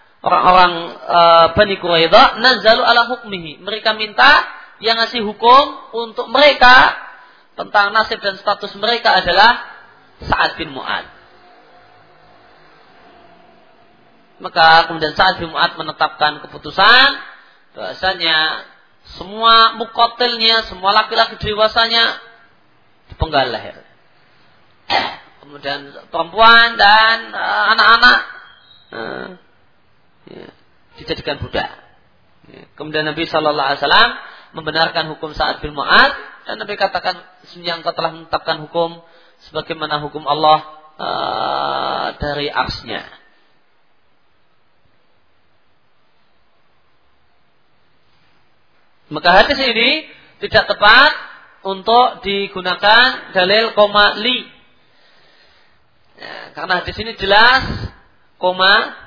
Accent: native